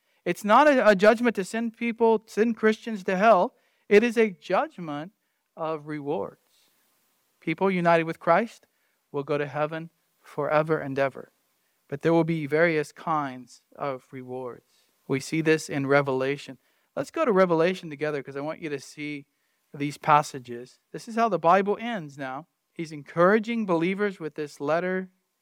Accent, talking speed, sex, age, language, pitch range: American, 160 wpm, male, 40-59, English, 145-195 Hz